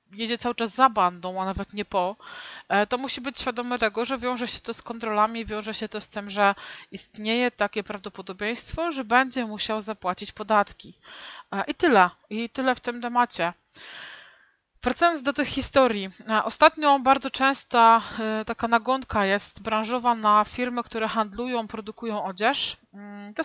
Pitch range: 200-245 Hz